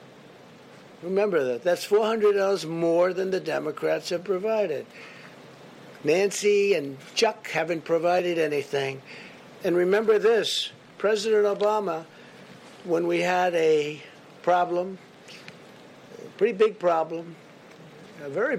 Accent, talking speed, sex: American, 105 wpm, male